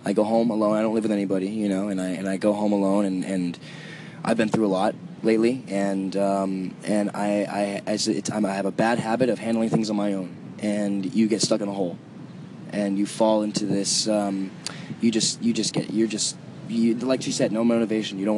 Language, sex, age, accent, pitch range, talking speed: English, male, 20-39, American, 100-115 Hz, 235 wpm